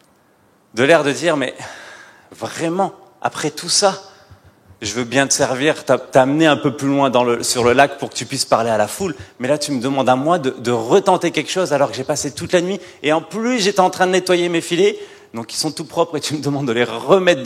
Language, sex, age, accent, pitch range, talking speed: French, male, 30-49, French, 120-165 Hz, 250 wpm